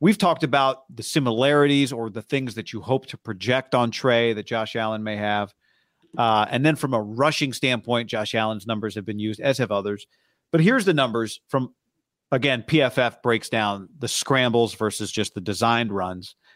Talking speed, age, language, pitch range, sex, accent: 190 wpm, 40-59, English, 110-145 Hz, male, American